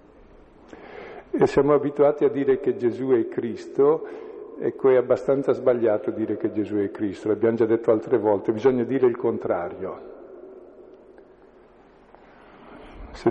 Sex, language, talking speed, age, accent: male, Italian, 125 wpm, 50-69, native